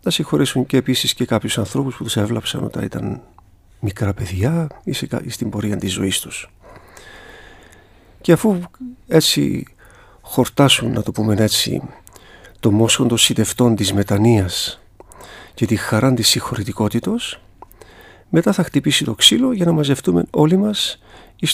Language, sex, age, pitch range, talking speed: Greek, male, 50-69, 105-155 Hz, 140 wpm